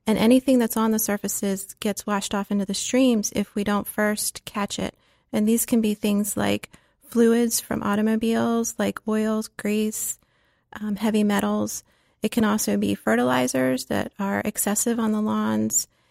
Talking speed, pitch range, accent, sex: 165 wpm, 195-230 Hz, American, female